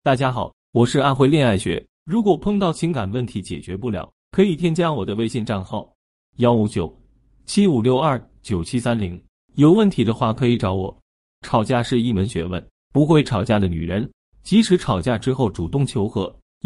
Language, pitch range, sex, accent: Chinese, 100-145 Hz, male, native